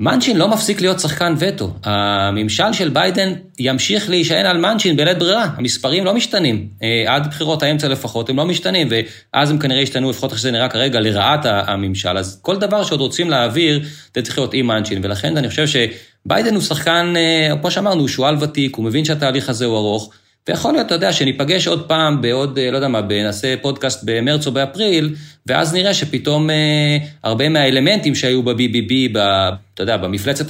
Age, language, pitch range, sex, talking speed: 30-49, Hebrew, 105-150 Hz, male, 175 wpm